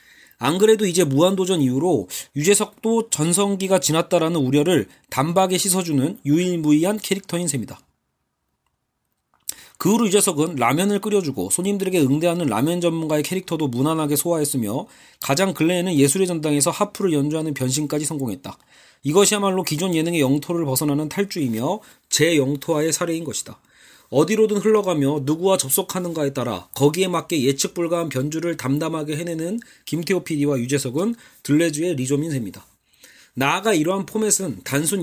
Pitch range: 140-195 Hz